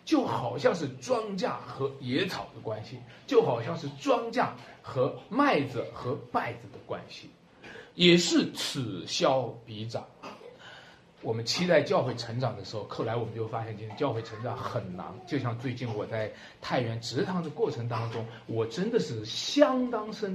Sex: male